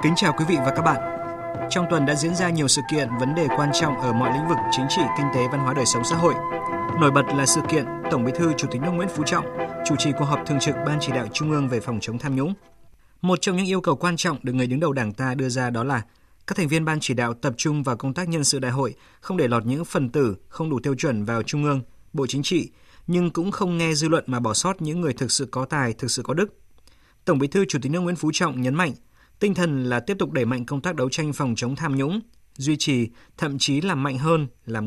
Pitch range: 125-165 Hz